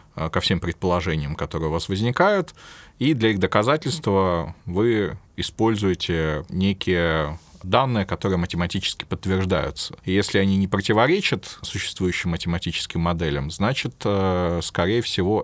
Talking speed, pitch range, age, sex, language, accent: 115 wpm, 85-105 Hz, 20-39, male, Russian, native